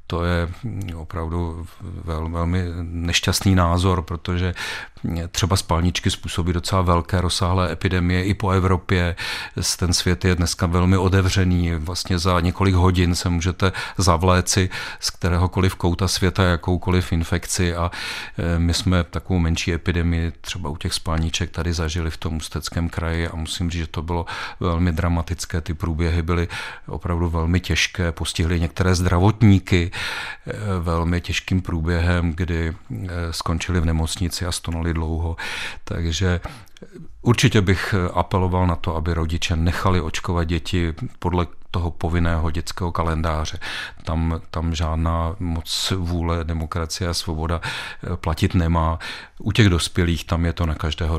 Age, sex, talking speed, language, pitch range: 40-59, male, 130 wpm, Czech, 85-90 Hz